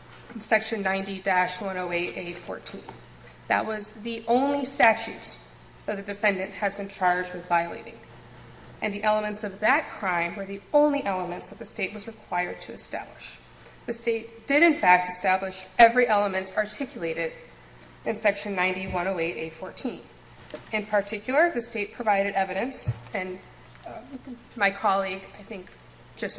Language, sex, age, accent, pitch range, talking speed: English, female, 30-49, American, 190-225 Hz, 135 wpm